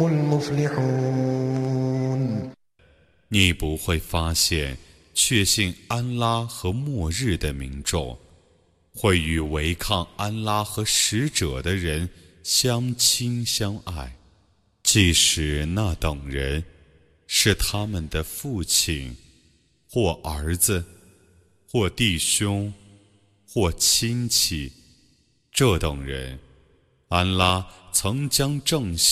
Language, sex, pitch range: Arabic, male, 80-105 Hz